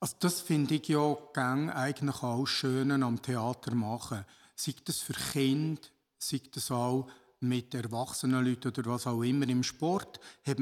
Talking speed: 160 wpm